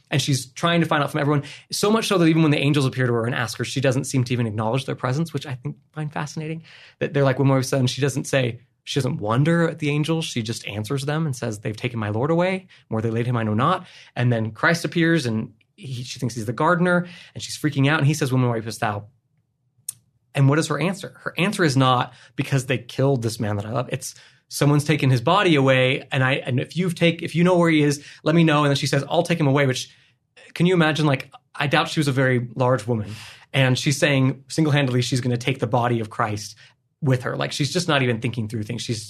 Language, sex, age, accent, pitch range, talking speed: English, male, 20-39, American, 125-150 Hz, 265 wpm